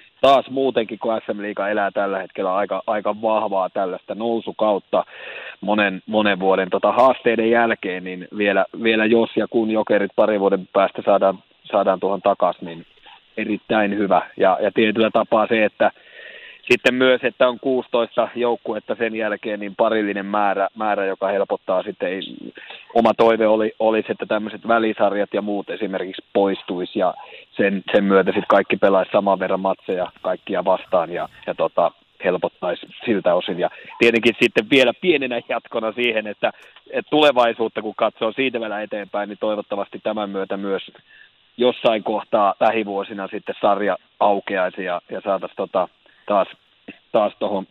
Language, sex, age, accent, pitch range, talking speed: Finnish, male, 30-49, native, 95-115 Hz, 150 wpm